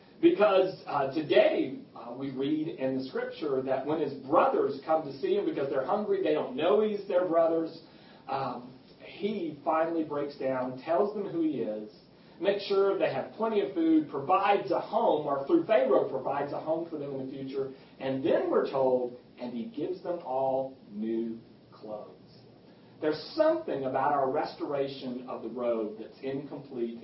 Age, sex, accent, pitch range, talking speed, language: 40-59, male, American, 125-165 Hz, 175 wpm, English